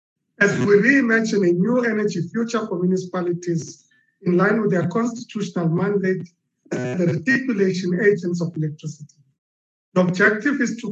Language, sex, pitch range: English, male, 175-220 Hz